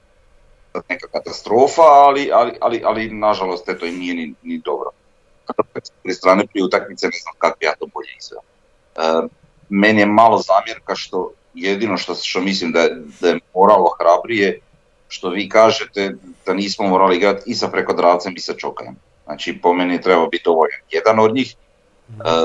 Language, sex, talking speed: Croatian, male, 165 wpm